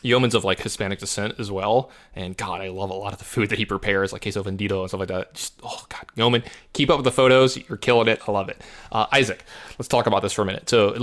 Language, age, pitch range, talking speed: English, 20-39, 100-120 Hz, 285 wpm